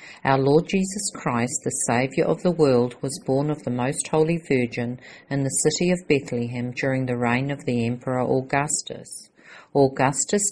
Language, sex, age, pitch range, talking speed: English, female, 50-69, 125-155 Hz, 165 wpm